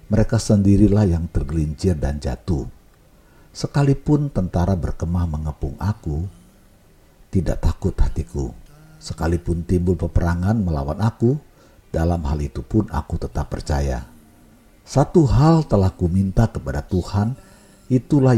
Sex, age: male, 50-69